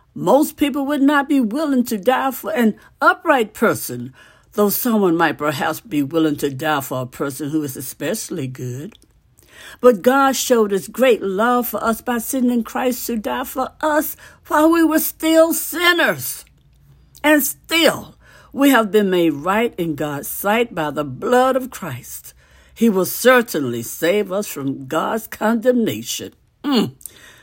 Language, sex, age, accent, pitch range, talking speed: English, female, 60-79, American, 155-260 Hz, 155 wpm